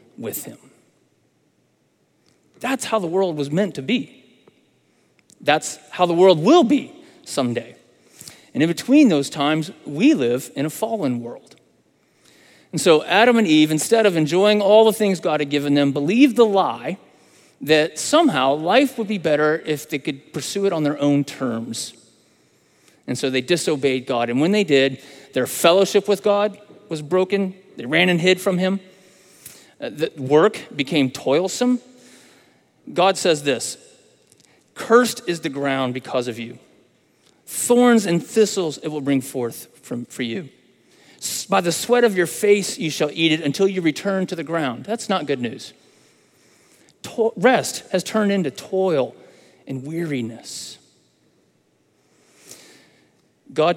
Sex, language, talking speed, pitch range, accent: male, English, 150 wpm, 145-205 Hz, American